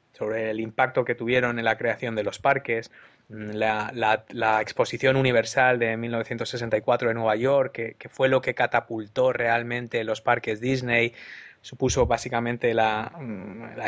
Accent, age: Spanish, 20-39